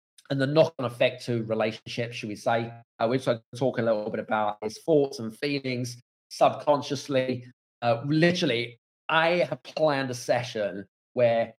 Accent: British